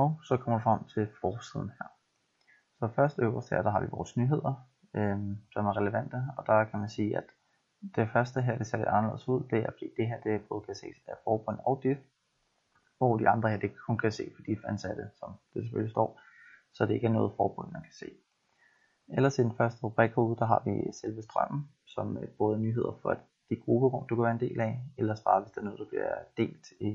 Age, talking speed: 20-39, 235 wpm